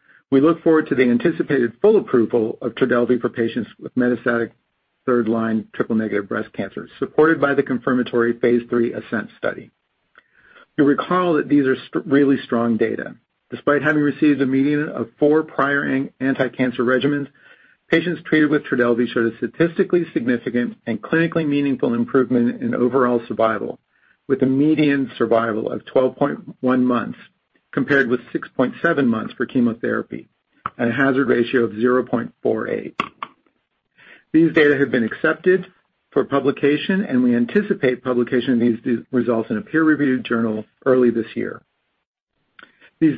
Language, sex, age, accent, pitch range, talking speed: English, male, 50-69, American, 120-145 Hz, 140 wpm